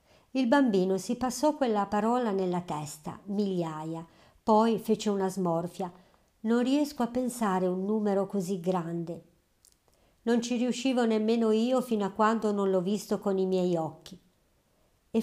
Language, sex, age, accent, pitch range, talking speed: Italian, male, 50-69, native, 185-235 Hz, 145 wpm